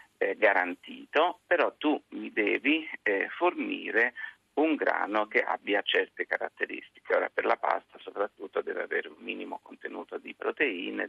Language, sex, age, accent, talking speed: Italian, male, 50-69, native, 140 wpm